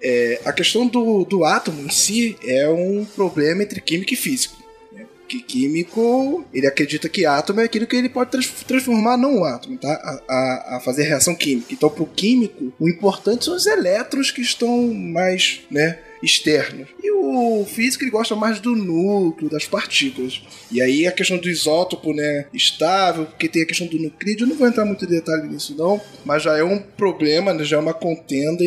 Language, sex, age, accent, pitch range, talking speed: Portuguese, male, 10-29, Brazilian, 150-230 Hz, 195 wpm